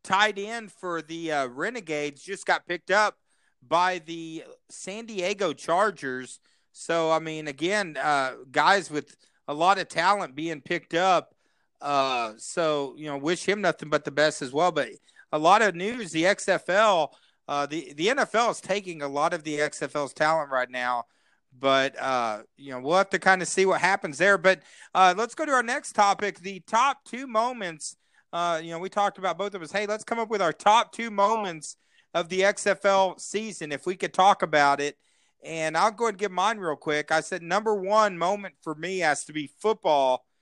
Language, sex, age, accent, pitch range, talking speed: English, male, 40-59, American, 155-200 Hz, 200 wpm